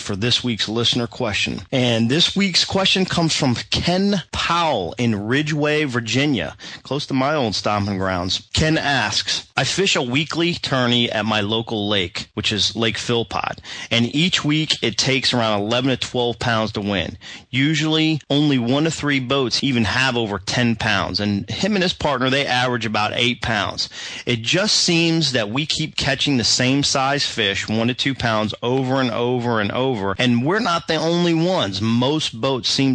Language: English